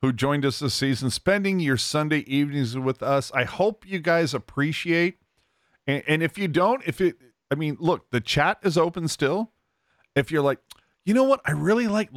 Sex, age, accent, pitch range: male, 40-59, American, 130-175 Hz